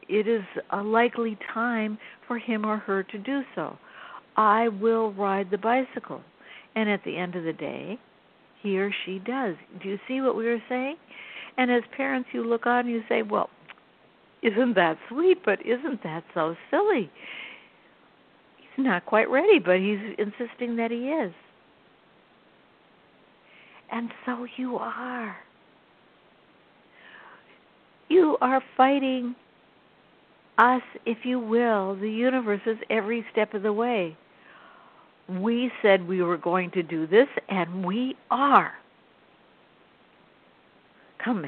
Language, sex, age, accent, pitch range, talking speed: English, female, 60-79, American, 205-260 Hz, 135 wpm